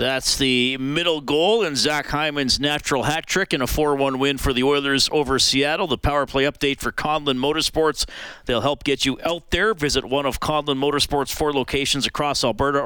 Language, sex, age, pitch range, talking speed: English, male, 40-59, 110-135 Hz, 190 wpm